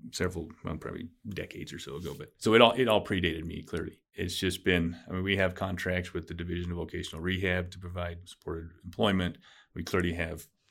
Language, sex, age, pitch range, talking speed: English, male, 30-49, 85-95 Hz, 200 wpm